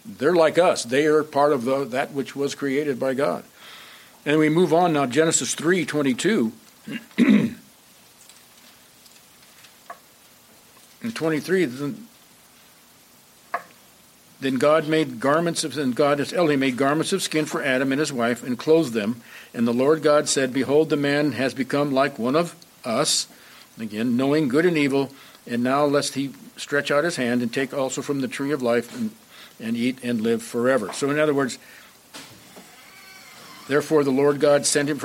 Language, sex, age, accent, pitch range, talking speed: English, male, 60-79, American, 130-160 Hz, 170 wpm